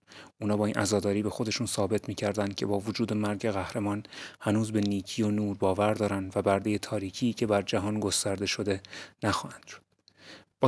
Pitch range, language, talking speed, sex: 100-110 Hz, Persian, 175 wpm, male